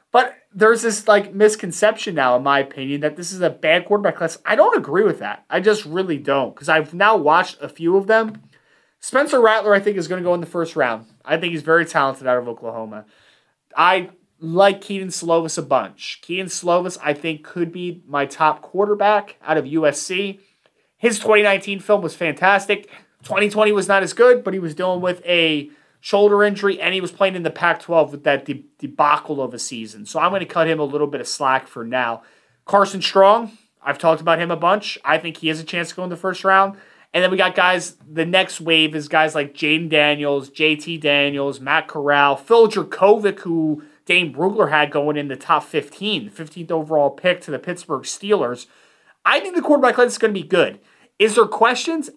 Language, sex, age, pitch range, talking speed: English, male, 30-49, 150-200 Hz, 210 wpm